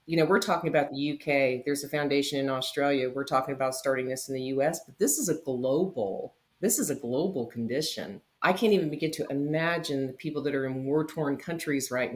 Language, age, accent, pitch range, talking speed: English, 40-59, American, 130-150 Hz, 215 wpm